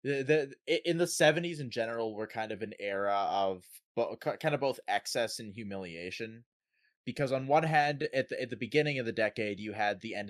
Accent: American